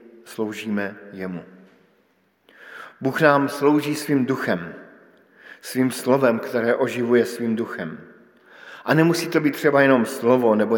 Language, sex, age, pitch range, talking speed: Slovak, male, 50-69, 115-135 Hz, 115 wpm